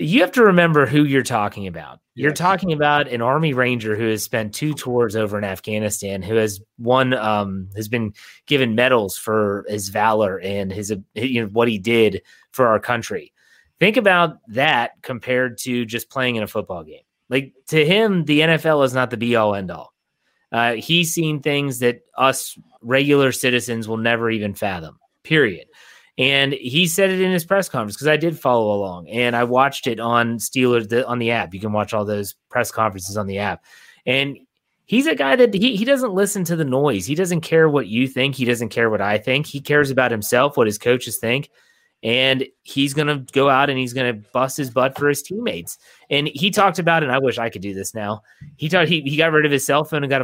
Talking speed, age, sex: 220 wpm, 30-49, male